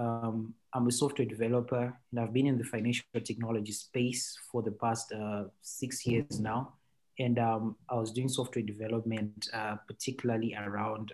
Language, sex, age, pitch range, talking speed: English, male, 20-39, 105-120 Hz, 160 wpm